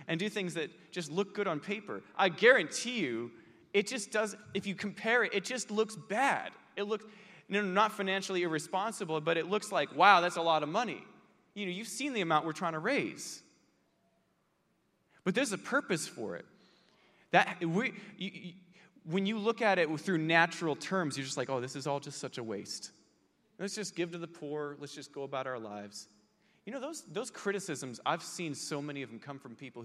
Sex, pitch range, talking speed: male, 145-195 Hz, 210 wpm